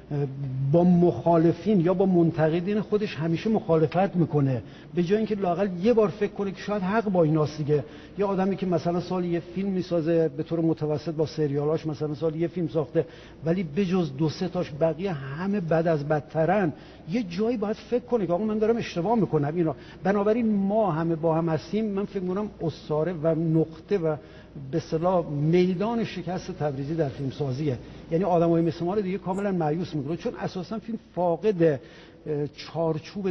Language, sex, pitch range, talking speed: Persian, male, 155-185 Hz, 175 wpm